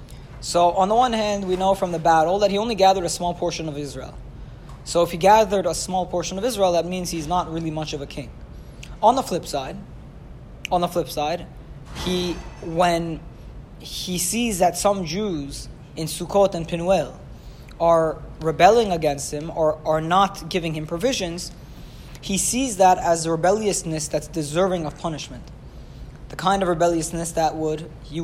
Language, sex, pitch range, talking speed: English, male, 155-185 Hz, 175 wpm